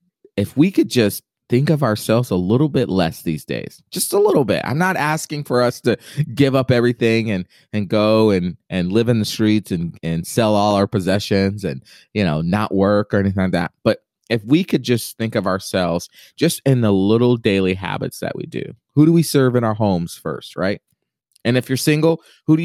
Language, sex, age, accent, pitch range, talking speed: English, male, 30-49, American, 100-140 Hz, 215 wpm